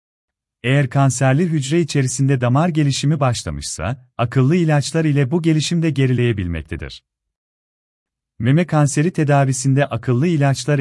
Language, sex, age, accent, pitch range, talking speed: Turkish, male, 40-59, native, 115-145 Hz, 100 wpm